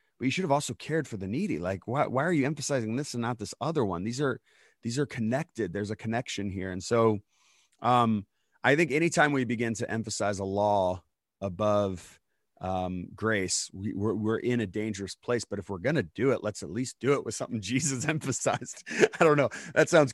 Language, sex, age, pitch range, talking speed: English, male, 30-49, 105-135 Hz, 220 wpm